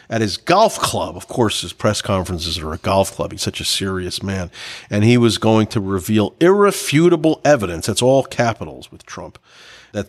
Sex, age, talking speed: male, 40-59, 190 wpm